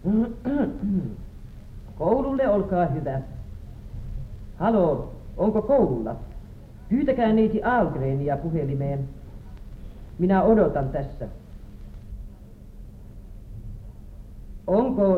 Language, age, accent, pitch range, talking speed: Finnish, 50-69, native, 125-200 Hz, 55 wpm